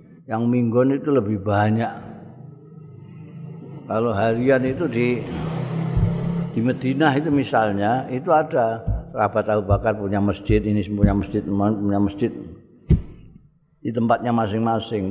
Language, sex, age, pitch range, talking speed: Indonesian, male, 50-69, 95-130 Hz, 110 wpm